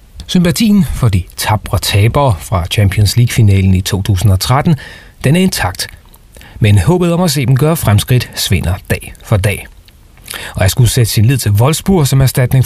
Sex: male